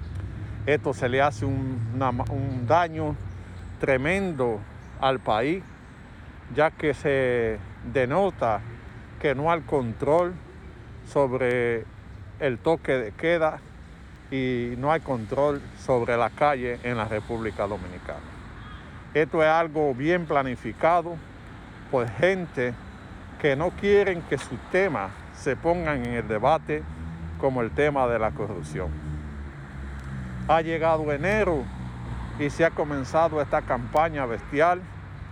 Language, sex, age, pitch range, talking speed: Spanish, male, 50-69, 100-155 Hz, 115 wpm